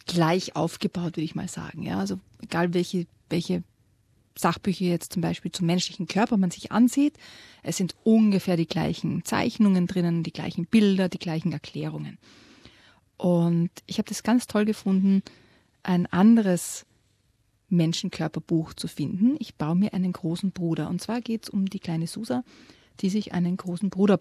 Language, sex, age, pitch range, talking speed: German, female, 30-49, 165-210 Hz, 160 wpm